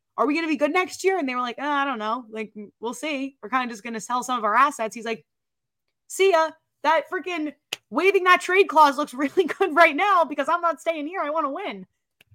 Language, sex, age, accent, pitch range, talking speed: English, female, 20-39, American, 200-300 Hz, 260 wpm